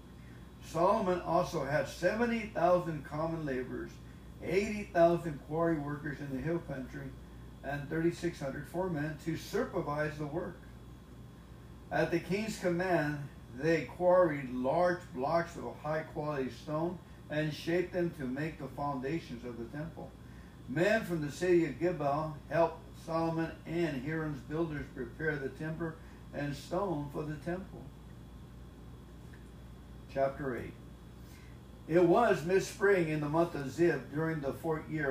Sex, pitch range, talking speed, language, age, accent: male, 135-170 Hz, 125 wpm, English, 60-79, American